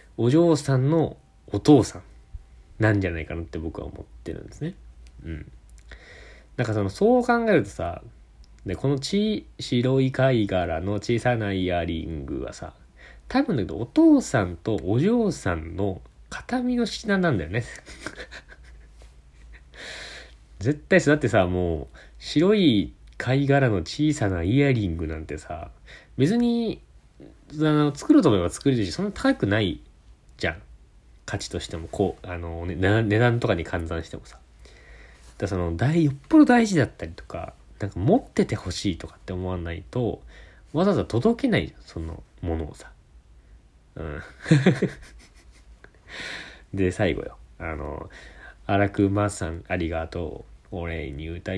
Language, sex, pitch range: Japanese, male, 80-135 Hz